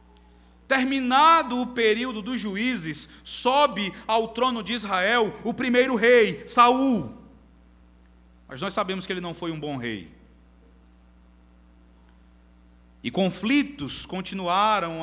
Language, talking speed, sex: Portuguese, 110 wpm, male